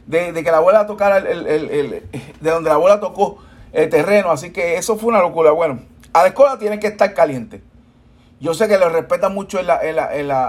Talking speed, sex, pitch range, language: 245 wpm, male, 150-210 Hz, Spanish